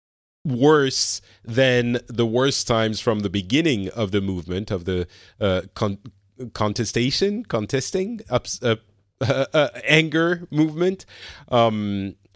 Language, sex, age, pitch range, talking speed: English, male, 40-59, 95-125 Hz, 105 wpm